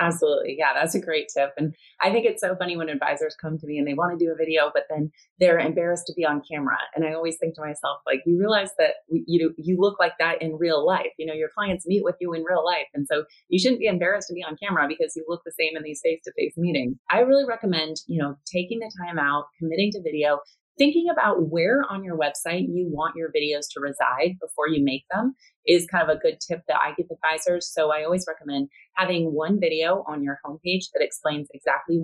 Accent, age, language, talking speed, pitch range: American, 30-49, English, 245 wpm, 145-185 Hz